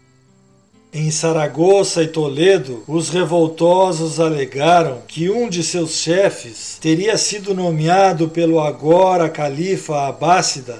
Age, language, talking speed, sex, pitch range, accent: 50-69, Portuguese, 105 wpm, male, 150-180 Hz, Brazilian